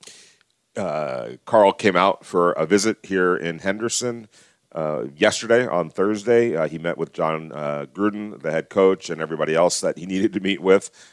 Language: English